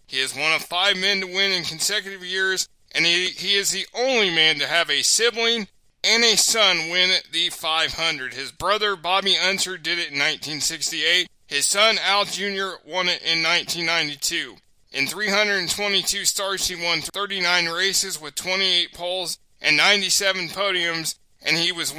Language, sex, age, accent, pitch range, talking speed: English, male, 20-39, American, 165-190 Hz, 165 wpm